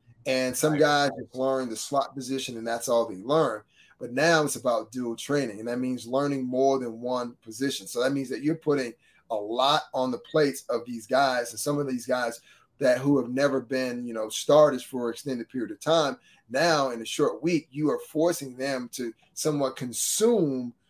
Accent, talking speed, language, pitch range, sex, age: American, 205 wpm, English, 125-155 Hz, male, 30-49